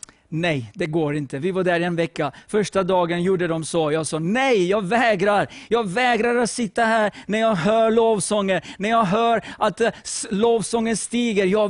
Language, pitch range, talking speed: English, 160-225 Hz, 185 wpm